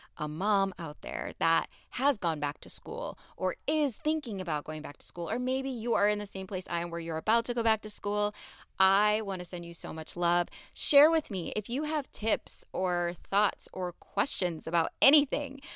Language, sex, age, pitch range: English, female, 20-39, 165-215 Hz